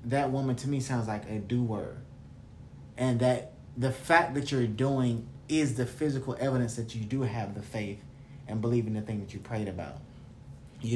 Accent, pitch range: American, 110-135 Hz